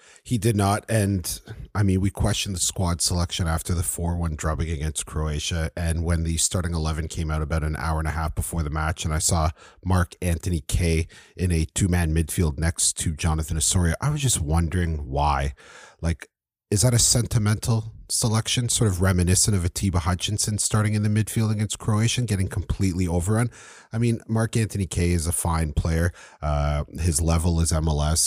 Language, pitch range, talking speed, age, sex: English, 80-100 Hz, 185 wpm, 30-49, male